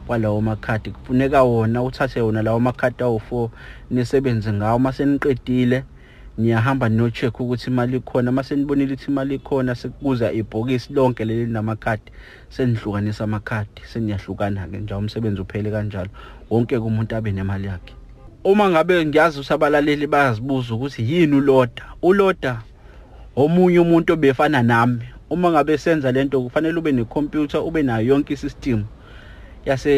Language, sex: English, male